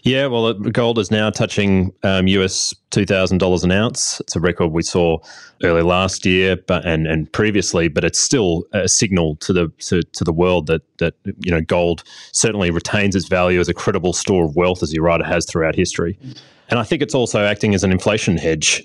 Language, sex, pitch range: English, male, 85-100 Hz